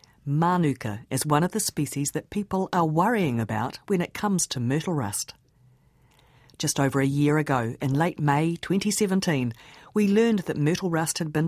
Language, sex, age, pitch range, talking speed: English, female, 50-69, 130-165 Hz, 170 wpm